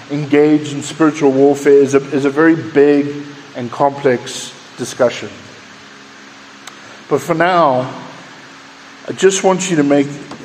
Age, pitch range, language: 50-69, 115-165 Hz, English